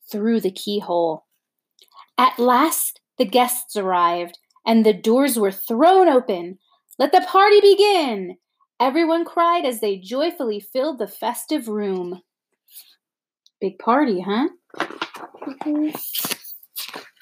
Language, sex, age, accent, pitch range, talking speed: English, female, 30-49, American, 200-310 Hz, 110 wpm